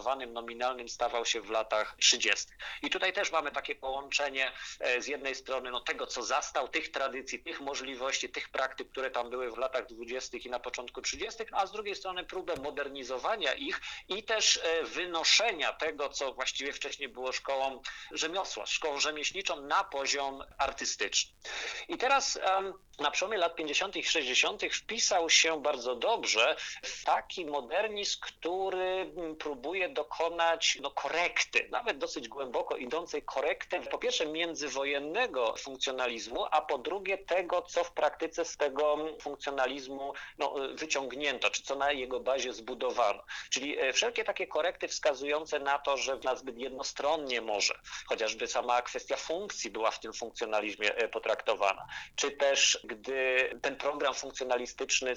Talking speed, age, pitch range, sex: 140 wpm, 50-69, 130-180 Hz, male